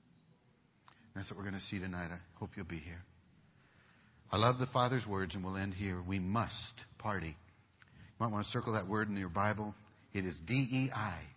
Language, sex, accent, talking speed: English, male, American, 195 wpm